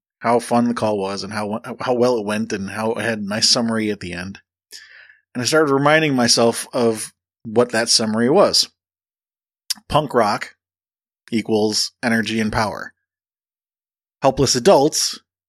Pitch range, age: 105-130 Hz, 30-49